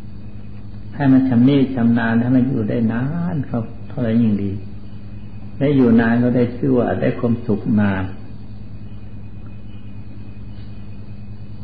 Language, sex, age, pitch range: Thai, male, 60-79, 105-115 Hz